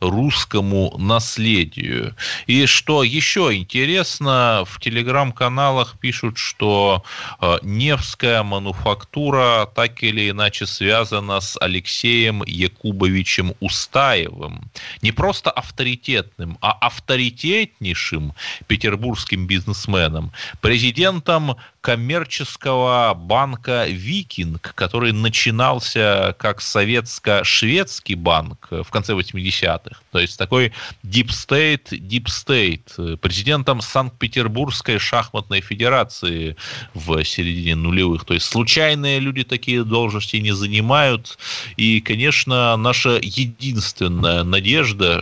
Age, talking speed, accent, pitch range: 30-49, 85 wpm, native, 95-125 Hz